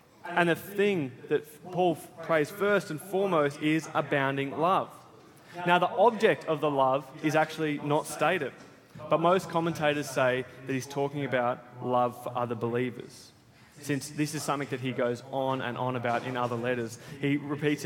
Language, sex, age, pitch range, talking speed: English, male, 20-39, 130-165 Hz, 170 wpm